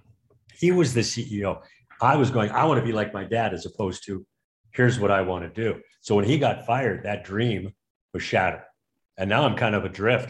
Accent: American